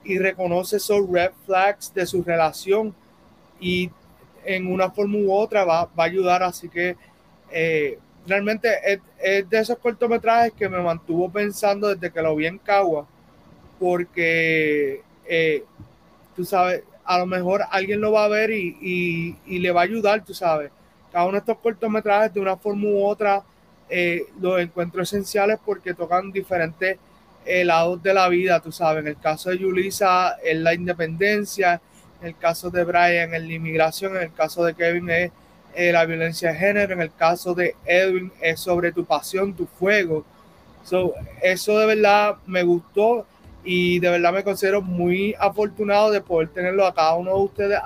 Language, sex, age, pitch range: Spanish, male, 30-49, 175-205 Hz